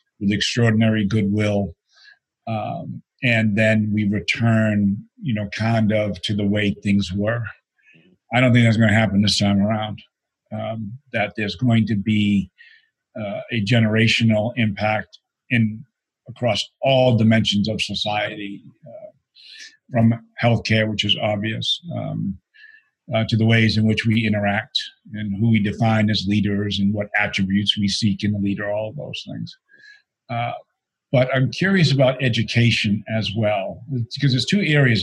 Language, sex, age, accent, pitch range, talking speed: English, male, 50-69, American, 105-130 Hz, 150 wpm